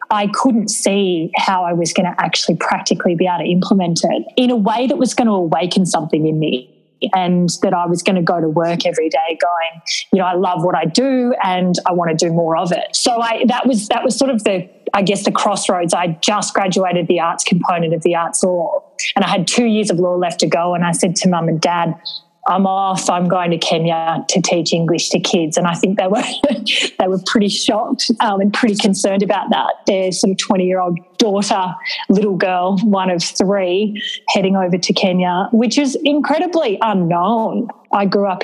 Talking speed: 220 wpm